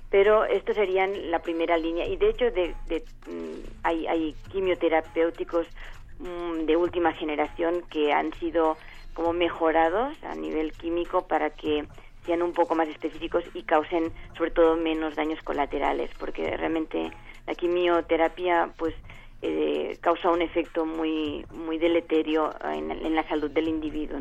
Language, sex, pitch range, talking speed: Spanish, female, 155-175 Hz, 140 wpm